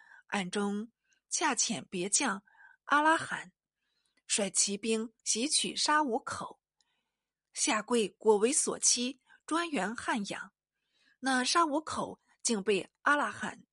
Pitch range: 210-295 Hz